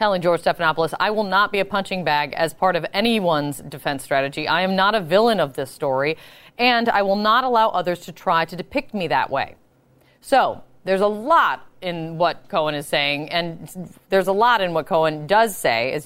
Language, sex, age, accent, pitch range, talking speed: English, female, 30-49, American, 155-230 Hz, 210 wpm